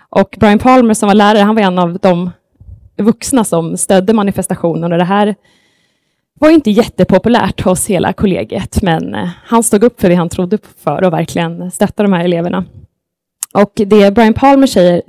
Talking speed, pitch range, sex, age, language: 180 wpm, 180-220 Hz, female, 20-39, English